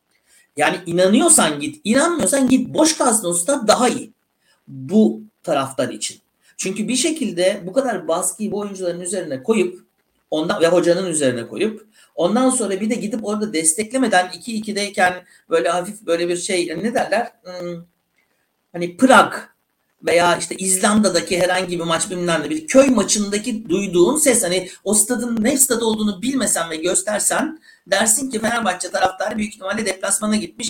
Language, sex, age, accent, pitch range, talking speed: Turkish, male, 60-79, native, 170-225 Hz, 145 wpm